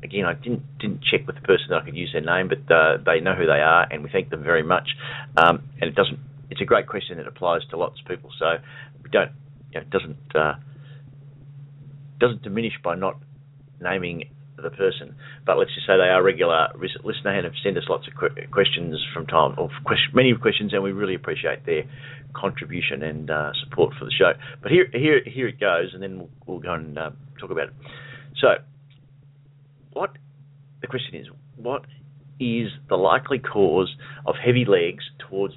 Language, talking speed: English, 200 wpm